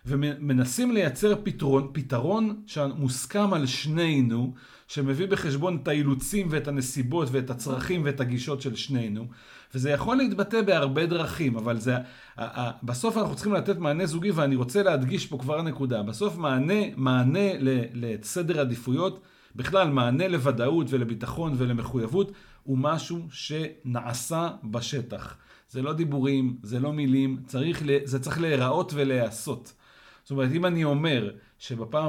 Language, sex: Hebrew, male